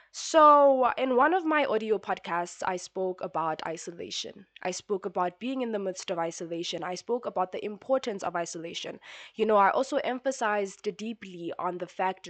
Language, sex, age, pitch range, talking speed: English, female, 20-39, 185-265 Hz, 175 wpm